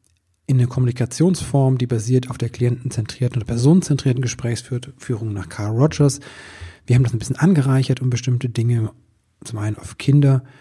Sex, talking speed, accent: male, 160 wpm, German